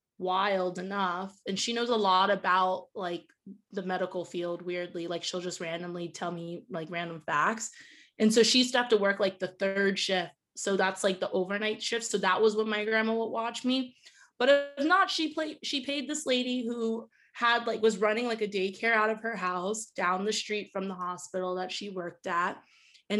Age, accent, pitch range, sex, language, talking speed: 20-39, American, 185-225 Hz, female, English, 205 wpm